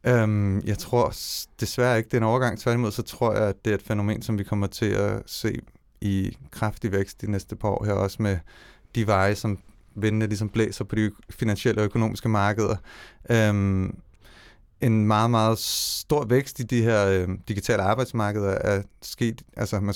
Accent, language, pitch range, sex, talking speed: native, Danish, 100-110 Hz, male, 190 wpm